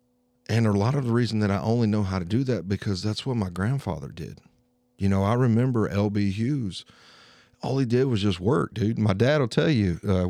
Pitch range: 100-130 Hz